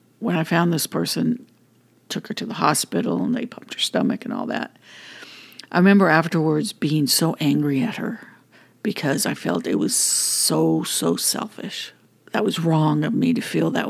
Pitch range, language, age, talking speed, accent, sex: 165-230 Hz, English, 50-69, 180 wpm, American, female